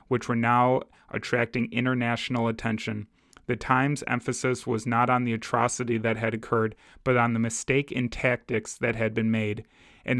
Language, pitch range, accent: English, 115-125 Hz, American